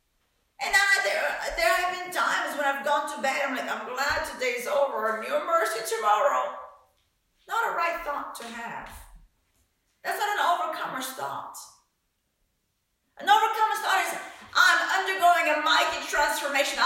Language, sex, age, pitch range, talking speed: English, female, 50-69, 260-325 Hz, 150 wpm